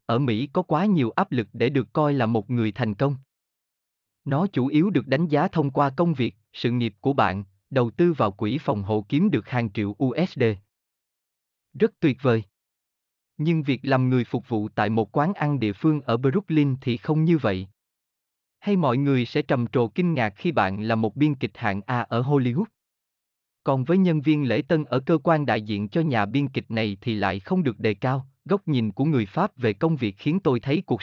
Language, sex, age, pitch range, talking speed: Vietnamese, male, 20-39, 110-155 Hz, 220 wpm